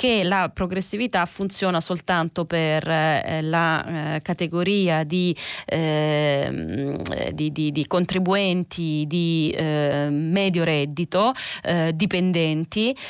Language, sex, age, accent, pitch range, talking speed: Italian, female, 20-39, native, 155-180 Hz, 100 wpm